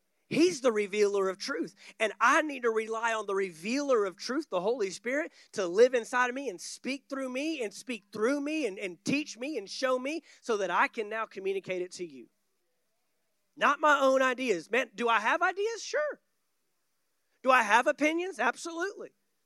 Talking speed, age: 190 wpm, 30-49